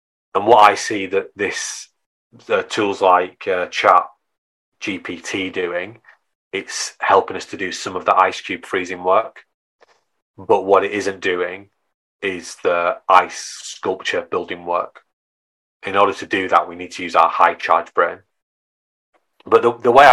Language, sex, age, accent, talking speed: English, male, 30-49, British, 160 wpm